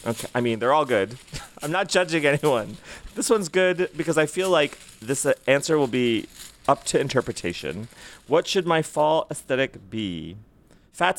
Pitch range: 115-160 Hz